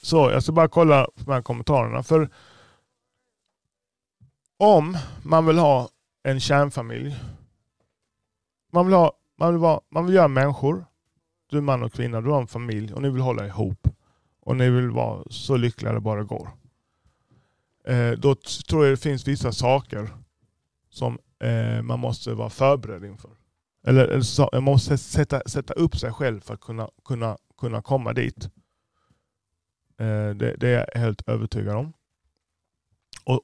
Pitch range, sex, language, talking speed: 110-140 Hz, male, Swedish, 150 wpm